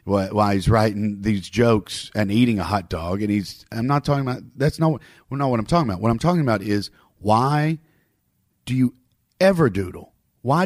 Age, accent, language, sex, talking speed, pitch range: 40-59, American, English, male, 195 wpm, 110-155 Hz